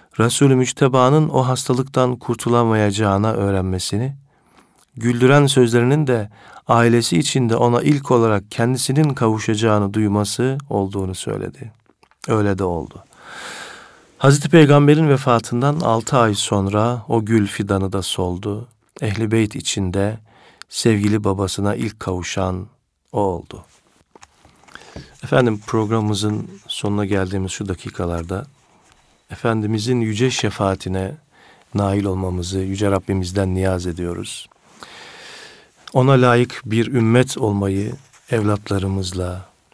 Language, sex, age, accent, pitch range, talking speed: Turkish, male, 50-69, native, 95-120 Hz, 95 wpm